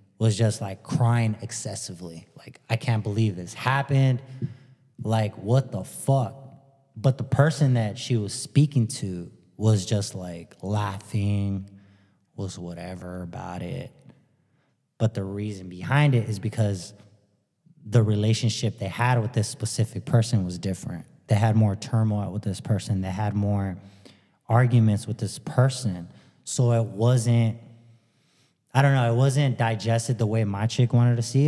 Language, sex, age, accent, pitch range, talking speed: English, male, 20-39, American, 105-125 Hz, 150 wpm